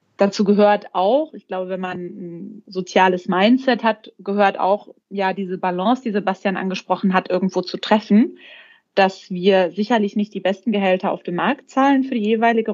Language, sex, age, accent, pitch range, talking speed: German, female, 20-39, German, 185-215 Hz, 175 wpm